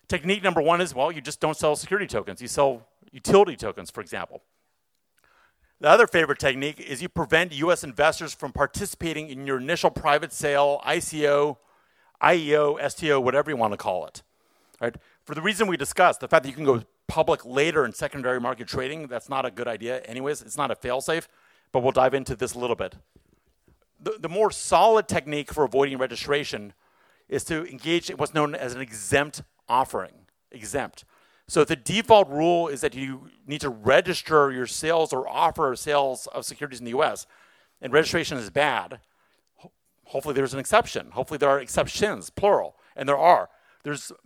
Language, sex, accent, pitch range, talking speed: English, male, American, 130-160 Hz, 185 wpm